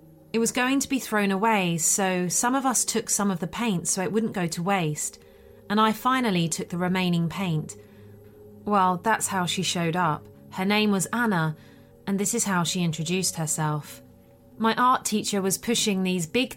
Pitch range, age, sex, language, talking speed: 165-220 Hz, 30-49, female, English, 190 wpm